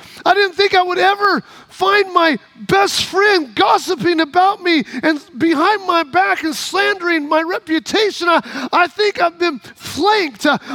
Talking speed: 155 wpm